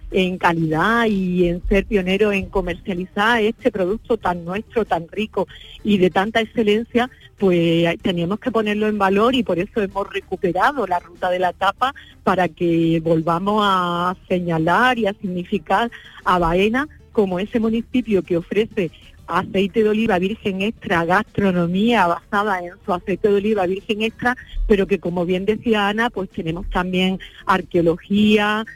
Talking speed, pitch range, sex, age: 150 wpm, 180-215 Hz, female, 40-59